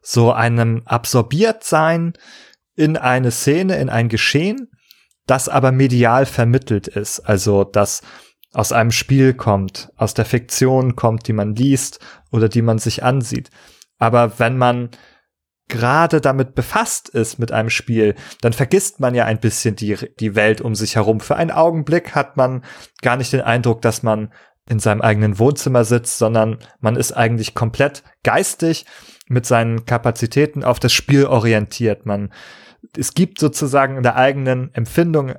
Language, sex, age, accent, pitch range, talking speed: German, male, 30-49, German, 110-135 Hz, 155 wpm